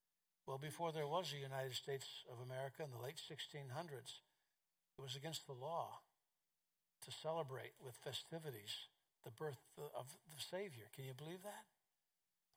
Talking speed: 155 wpm